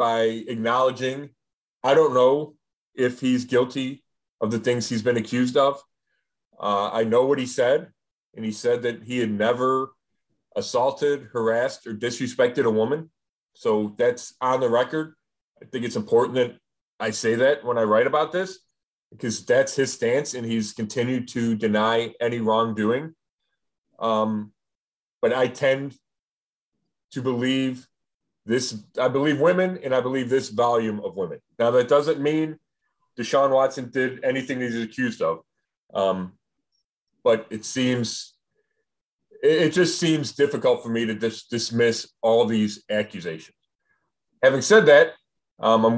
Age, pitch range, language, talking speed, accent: 30-49, 115-140 Hz, English, 145 wpm, American